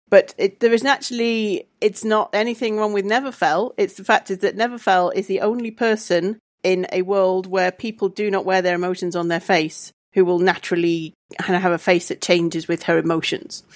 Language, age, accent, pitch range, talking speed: English, 40-59, British, 175-205 Hz, 200 wpm